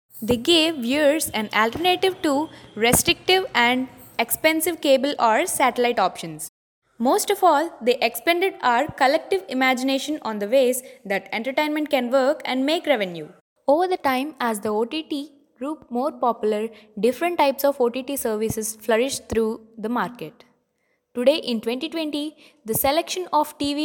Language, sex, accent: English, female, Indian